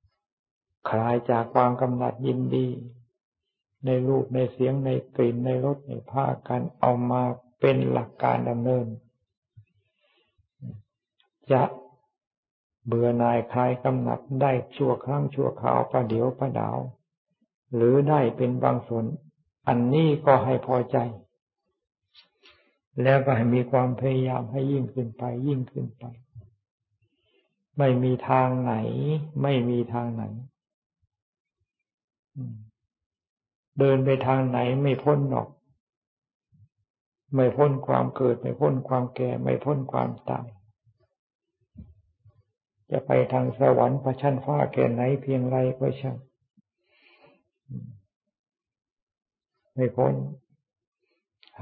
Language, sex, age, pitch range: Thai, male, 60-79, 115-135 Hz